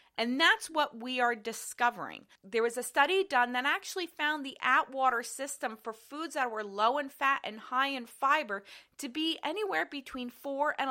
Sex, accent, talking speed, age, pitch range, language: female, American, 185 wpm, 30-49, 230-330 Hz, English